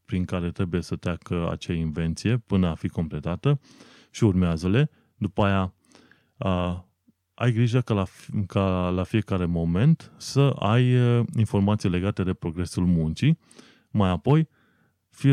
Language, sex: Romanian, male